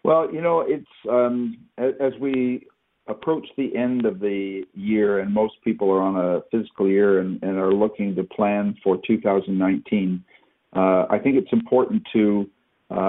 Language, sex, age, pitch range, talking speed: English, male, 50-69, 95-120 Hz, 165 wpm